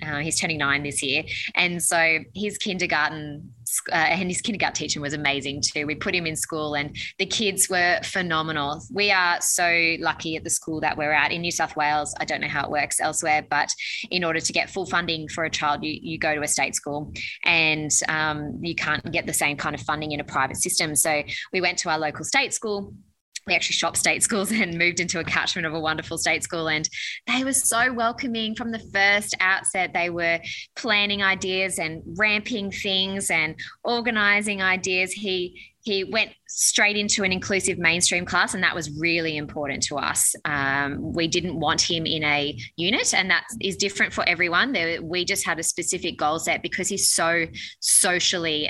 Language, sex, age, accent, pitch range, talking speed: English, female, 20-39, Australian, 155-185 Hz, 200 wpm